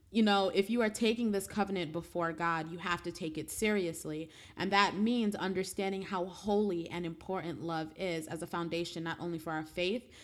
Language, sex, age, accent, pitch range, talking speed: English, female, 30-49, American, 165-205 Hz, 200 wpm